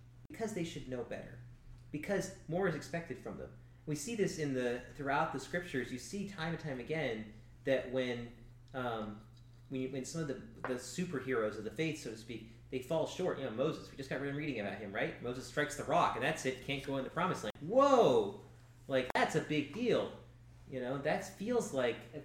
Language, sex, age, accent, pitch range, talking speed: English, male, 30-49, American, 120-160 Hz, 220 wpm